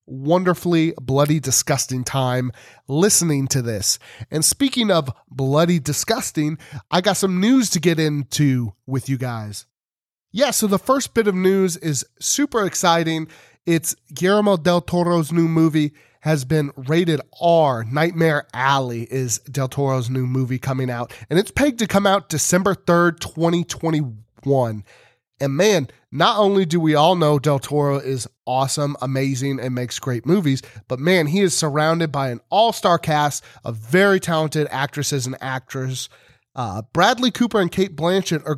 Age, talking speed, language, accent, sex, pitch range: 30-49, 155 wpm, English, American, male, 135-175 Hz